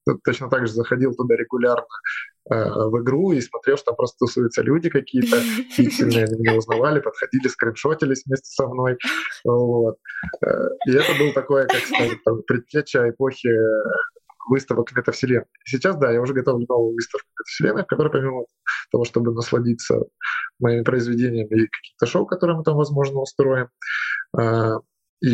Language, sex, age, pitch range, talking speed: Russian, male, 20-39, 120-150 Hz, 145 wpm